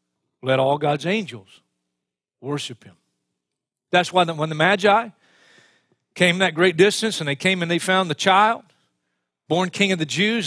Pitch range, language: 150-205 Hz, English